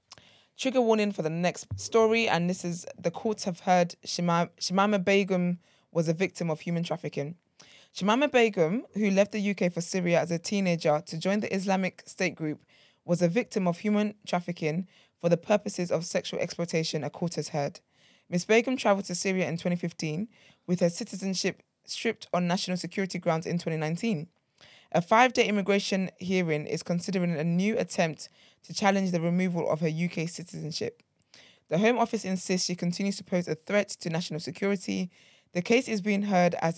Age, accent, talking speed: 20-39, British, 175 wpm